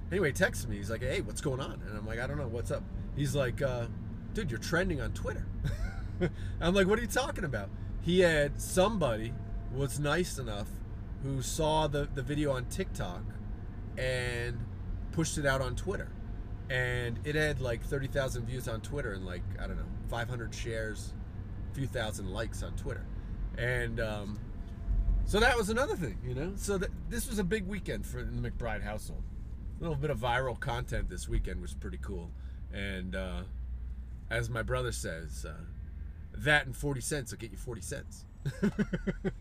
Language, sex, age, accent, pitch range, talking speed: English, male, 30-49, American, 95-130 Hz, 180 wpm